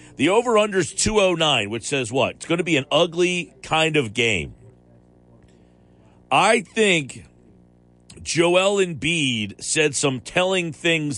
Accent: American